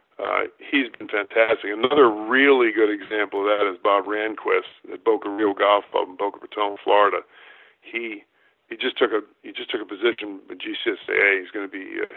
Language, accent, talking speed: English, American, 190 wpm